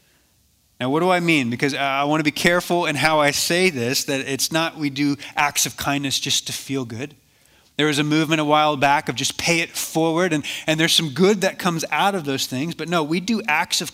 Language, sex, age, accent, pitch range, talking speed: English, male, 30-49, American, 135-170 Hz, 245 wpm